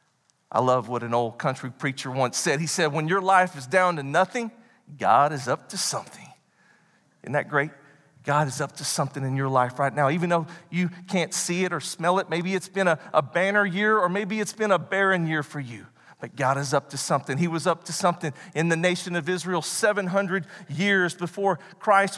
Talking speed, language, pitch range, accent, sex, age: 220 wpm, English, 140-195 Hz, American, male, 40-59